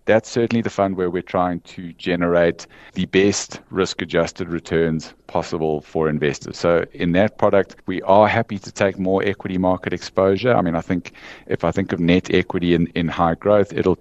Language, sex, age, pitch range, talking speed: English, male, 50-69, 80-100 Hz, 195 wpm